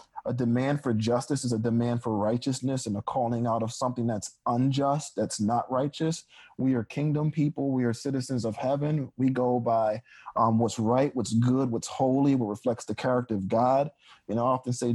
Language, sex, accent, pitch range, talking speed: English, male, American, 115-135 Hz, 200 wpm